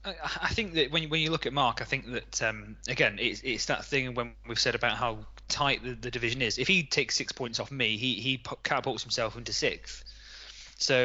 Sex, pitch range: male, 110-135 Hz